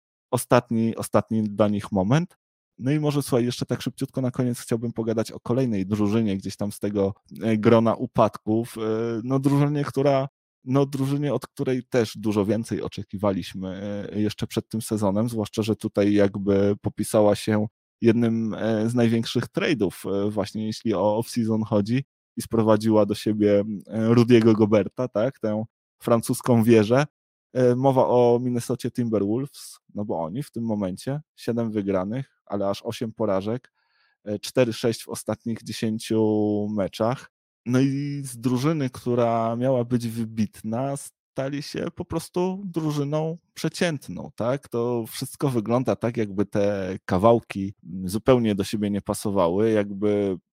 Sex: male